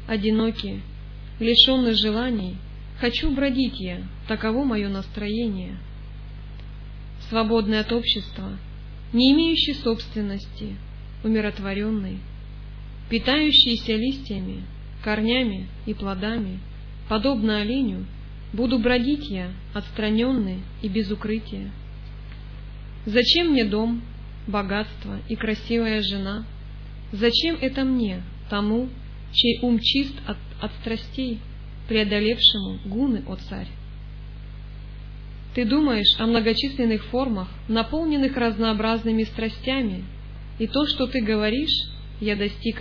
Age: 20-39